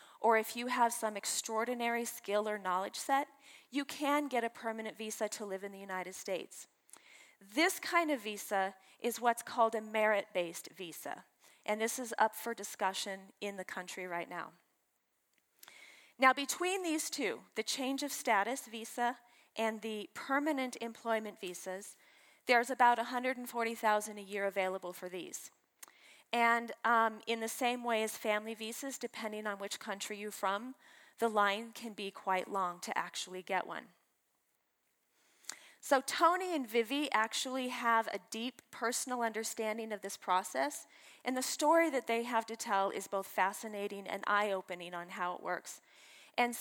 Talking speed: 155 wpm